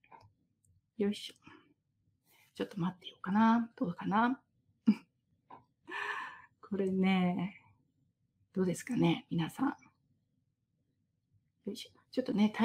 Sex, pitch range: female, 200-260 Hz